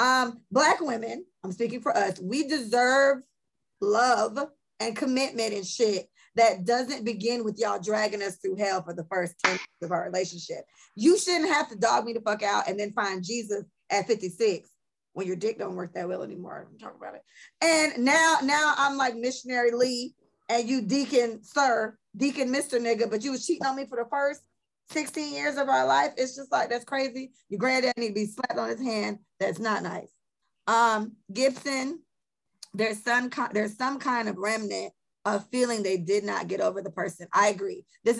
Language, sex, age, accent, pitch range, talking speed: English, female, 20-39, American, 205-270 Hz, 195 wpm